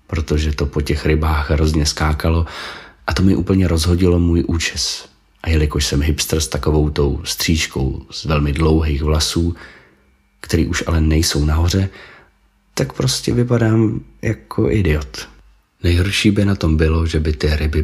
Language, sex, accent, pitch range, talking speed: Czech, male, native, 75-85 Hz, 150 wpm